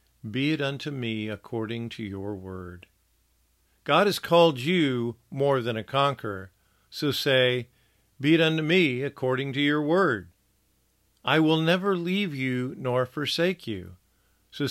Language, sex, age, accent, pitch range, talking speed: English, male, 50-69, American, 105-145 Hz, 145 wpm